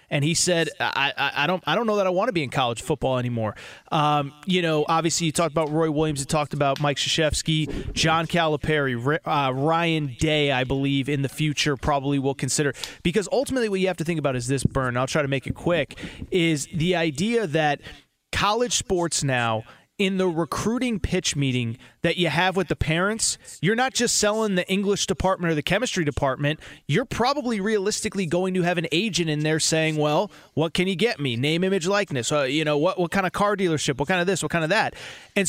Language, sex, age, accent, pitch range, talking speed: English, male, 30-49, American, 150-195 Hz, 220 wpm